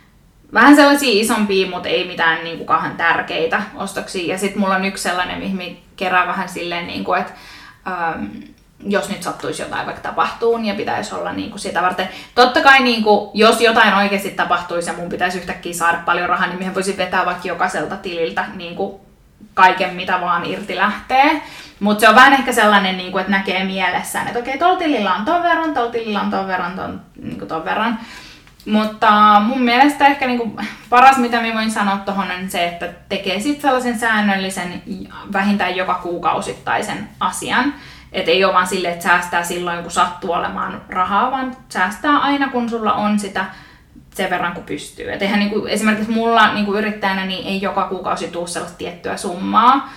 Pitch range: 180-230 Hz